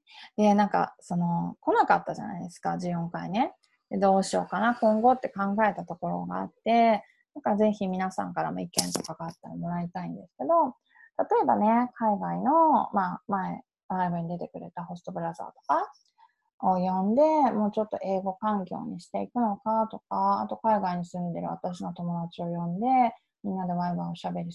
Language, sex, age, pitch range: Japanese, female, 20-39, 175-245 Hz